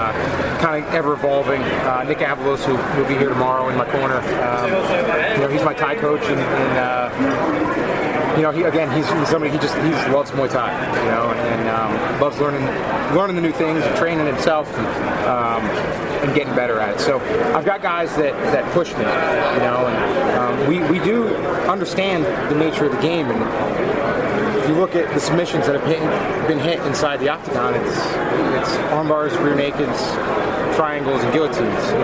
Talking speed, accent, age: 195 wpm, American, 30-49